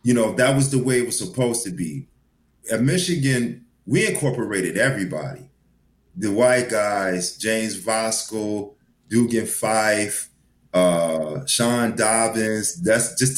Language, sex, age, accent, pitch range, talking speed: English, male, 30-49, American, 100-125 Hz, 125 wpm